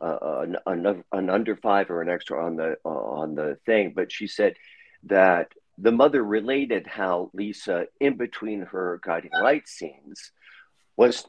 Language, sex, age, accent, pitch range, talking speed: English, male, 50-69, American, 95-140 Hz, 160 wpm